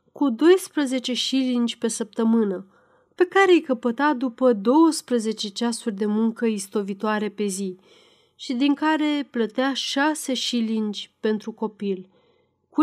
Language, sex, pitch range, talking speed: Romanian, female, 220-290 Hz, 120 wpm